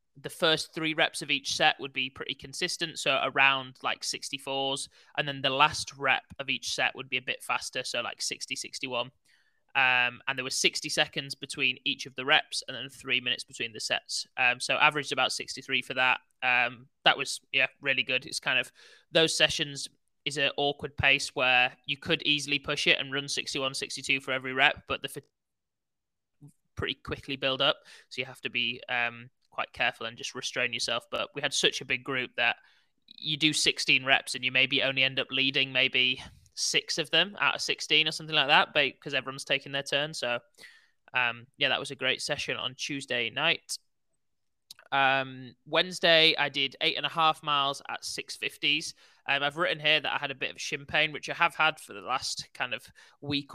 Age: 20-39